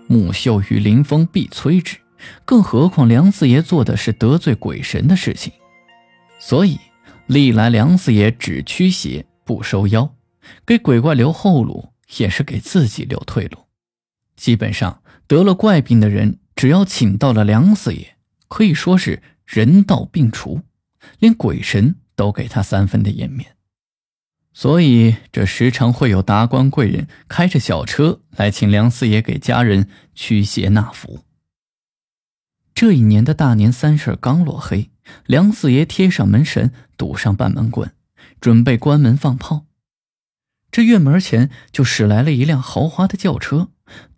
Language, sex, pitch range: Chinese, male, 110-155 Hz